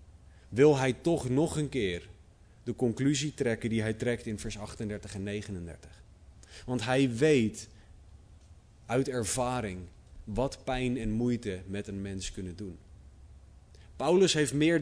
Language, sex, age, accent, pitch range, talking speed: Dutch, male, 30-49, Dutch, 90-125 Hz, 140 wpm